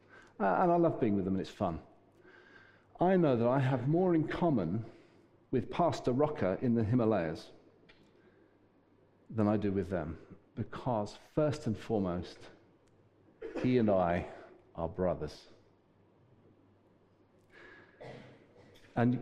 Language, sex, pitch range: English, male, 95-125 Hz